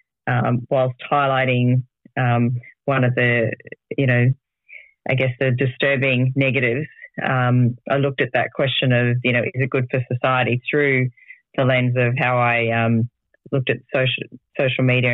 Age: 40-59